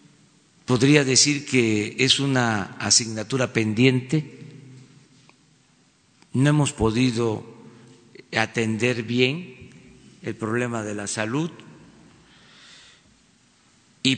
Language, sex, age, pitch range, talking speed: Spanish, male, 50-69, 125-150 Hz, 75 wpm